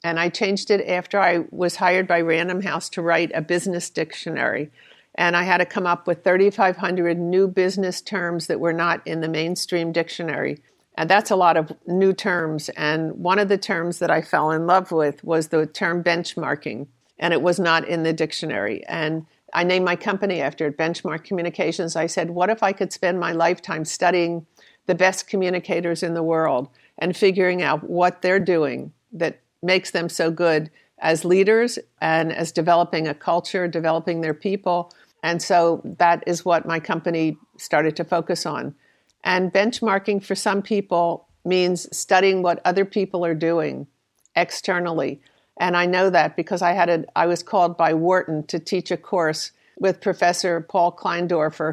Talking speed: 180 wpm